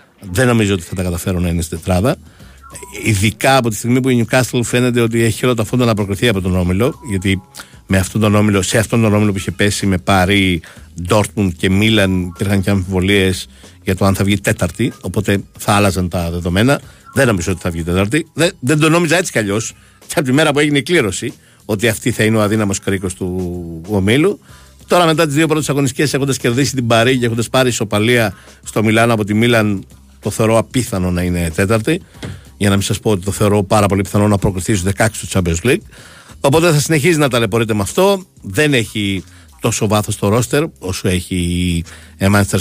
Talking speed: 210 wpm